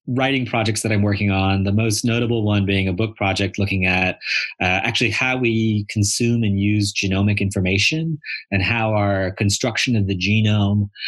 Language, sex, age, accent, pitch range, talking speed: English, male, 30-49, American, 100-125 Hz, 175 wpm